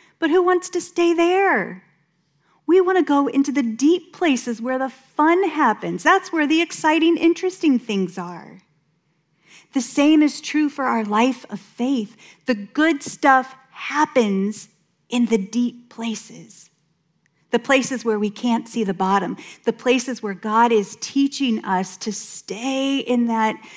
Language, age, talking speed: English, 30-49, 155 wpm